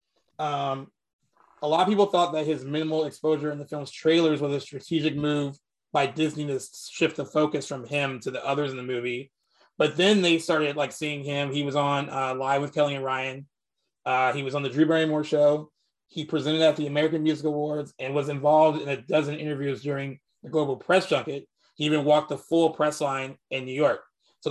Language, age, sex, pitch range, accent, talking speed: English, 20-39, male, 135-155 Hz, American, 210 wpm